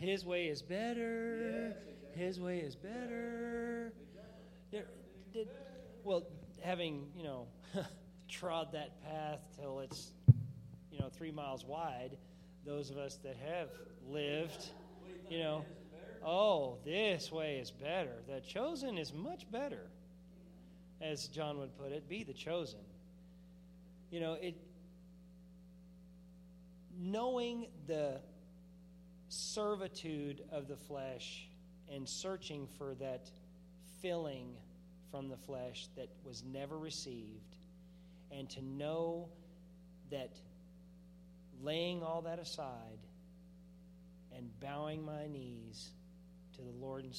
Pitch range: 140-180 Hz